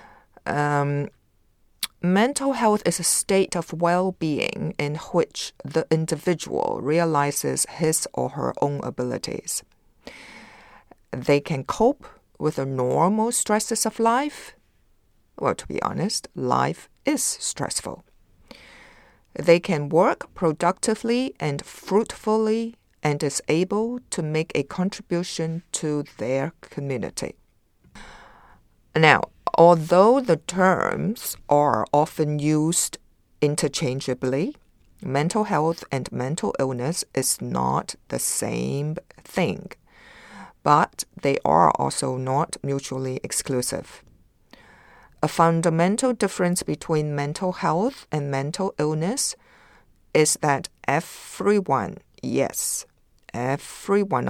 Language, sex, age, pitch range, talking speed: English, female, 50-69, 140-190 Hz, 100 wpm